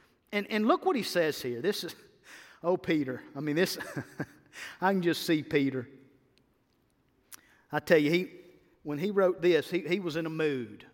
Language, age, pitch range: English, 50-69, 155-245 Hz